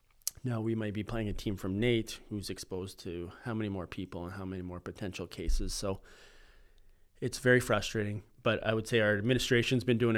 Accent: American